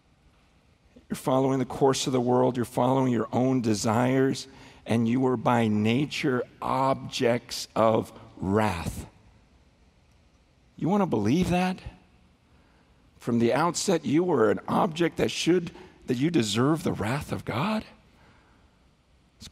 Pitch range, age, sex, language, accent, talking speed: 120-200 Hz, 50-69, male, English, American, 125 wpm